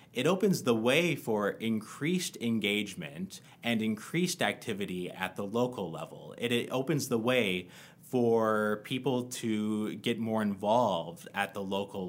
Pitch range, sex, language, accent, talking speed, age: 105-145 Hz, male, English, American, 140 wpm, 30-49